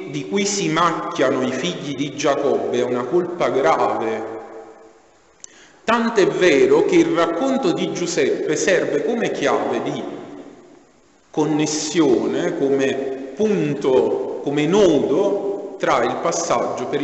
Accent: native